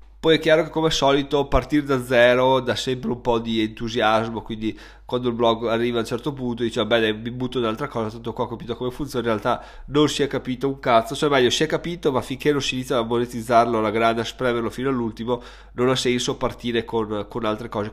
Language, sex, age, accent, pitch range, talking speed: Italian, male, 20-39, native, 115-145 Hz, 240 wpm